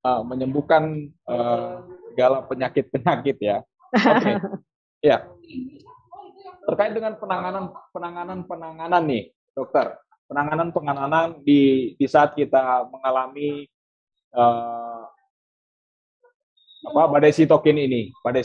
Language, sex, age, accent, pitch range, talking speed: Indonesian, male, 20-39, native, 130-170 Hz, 100 wpm